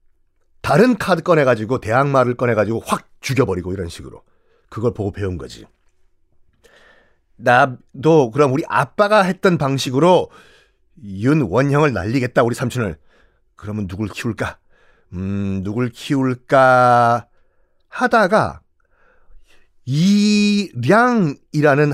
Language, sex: Korean, male